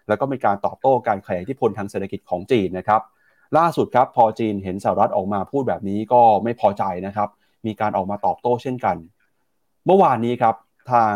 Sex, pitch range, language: male, 105-140 Hz, Thai